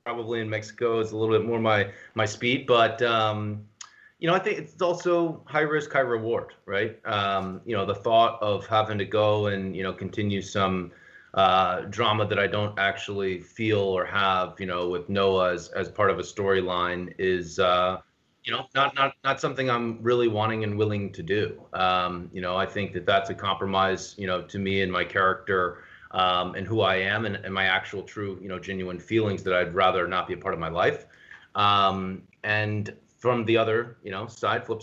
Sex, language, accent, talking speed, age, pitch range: male, English, American, 210 wpm, 30-49, 95-115 Hz